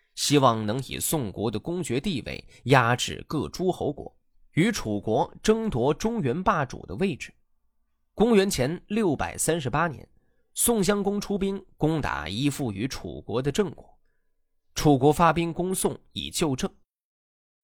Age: 20-39